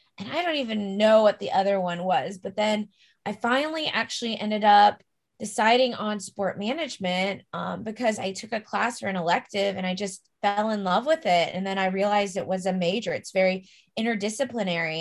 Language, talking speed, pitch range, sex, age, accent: English, 195 wpm, 185-215 Hz, female, 20-39, American